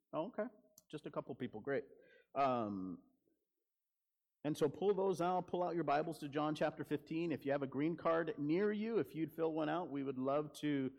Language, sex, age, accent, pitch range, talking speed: English, male, 40-59, American, 130-165 Hz, 210 wpm